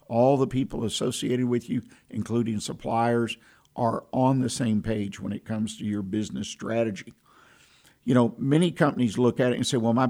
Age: 50-69